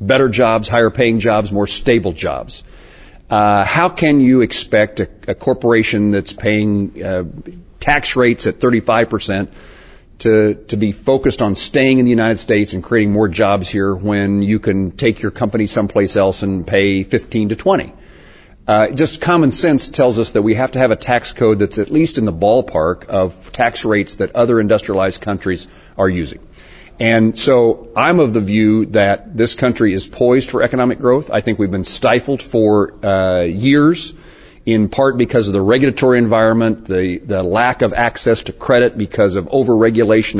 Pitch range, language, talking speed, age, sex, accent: 100-125 Hz, English, 175 wpm, 50-69, male, American